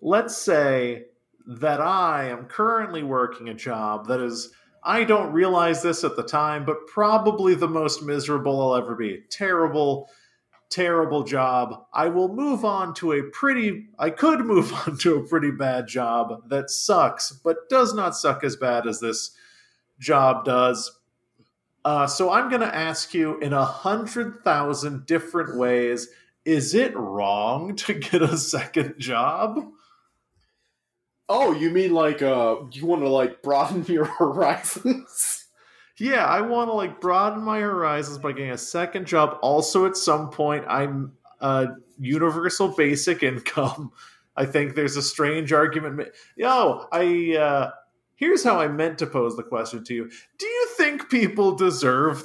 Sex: male